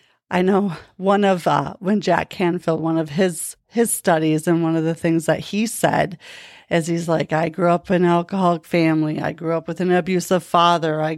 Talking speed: 210 wpm